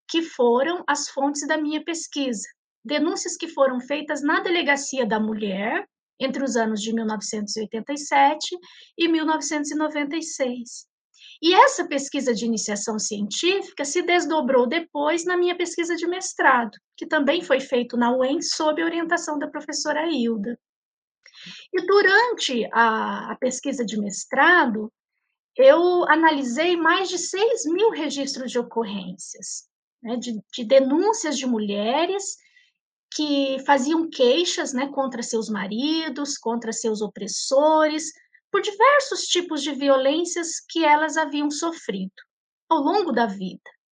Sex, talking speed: female, 125 wpm